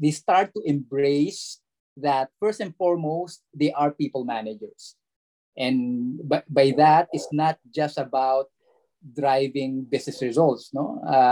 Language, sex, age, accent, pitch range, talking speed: English, male, 20-39, Filipino, 140-180 Hz, 135 wpm